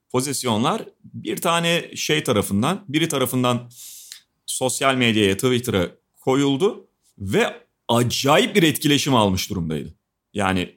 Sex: male